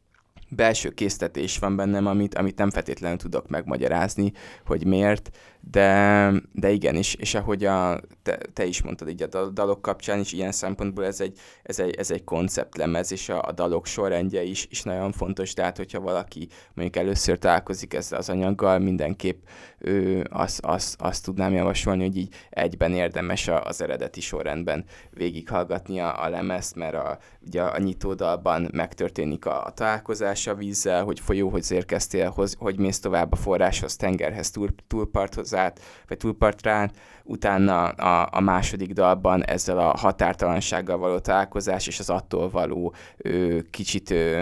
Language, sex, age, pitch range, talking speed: Hungarian, male, 20-39, 90-100 Hz, 155 wpm